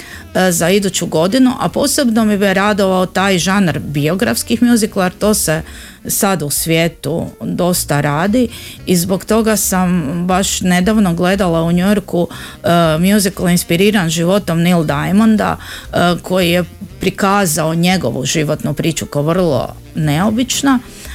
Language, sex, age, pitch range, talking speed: Croatian, female, 30-49, 165-205 Hz, 125 wpm